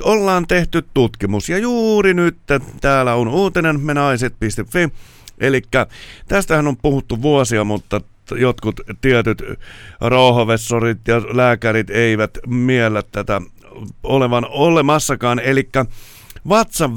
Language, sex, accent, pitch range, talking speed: Finnish, male, native, 115-155 Hz, 105 wpm